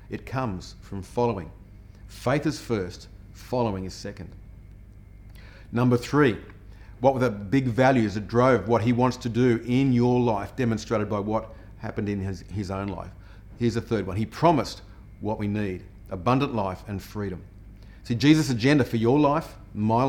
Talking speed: 165 wpm